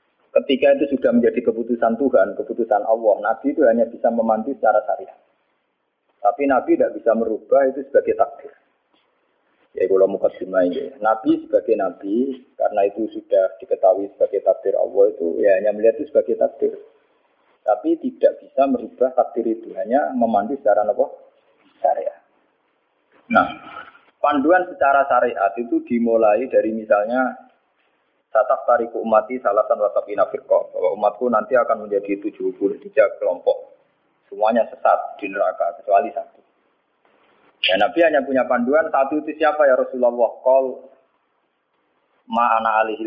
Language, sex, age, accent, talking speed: Indonesian, male, 30-49, native, 130 wpm